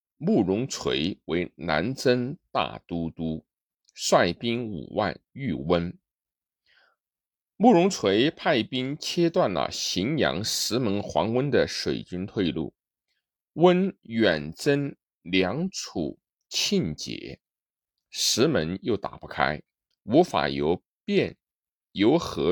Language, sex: Chinese, male